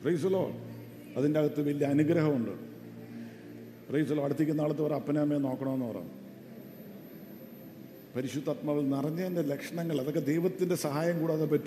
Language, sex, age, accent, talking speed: English, male, 50-69, Indian, 55 wpm